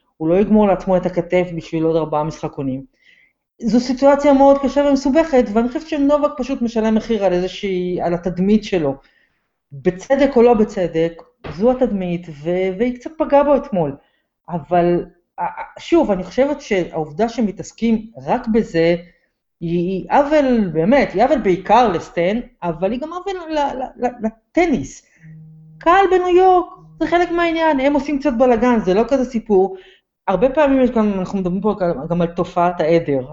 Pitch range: 170-260 Hz